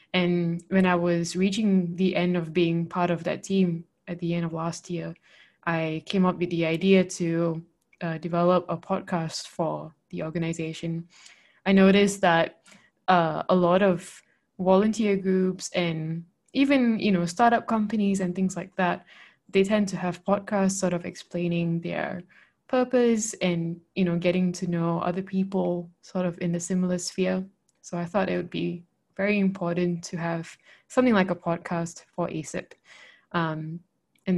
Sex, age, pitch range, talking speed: female, 20-39, 170-190 Hz, 160 wpm